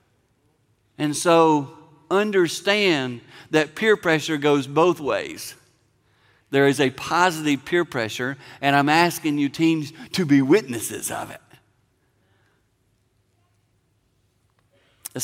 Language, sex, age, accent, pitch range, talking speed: English, male, 50-69, American, 125-175 Hz, 100 wpm